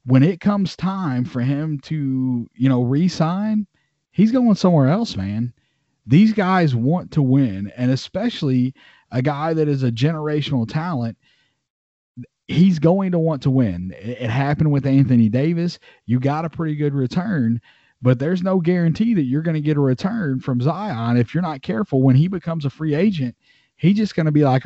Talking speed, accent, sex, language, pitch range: 185 wpm, American, male, English, 120-155 Hz